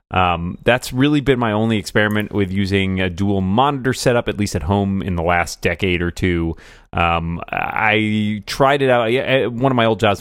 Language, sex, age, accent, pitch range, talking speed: English, male, 30-49, American, 90-110 Hz, 205 wpm